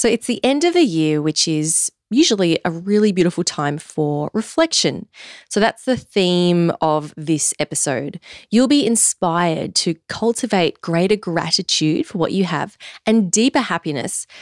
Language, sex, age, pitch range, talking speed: English, female, 20-39, 160-230 Hz, 155 wpm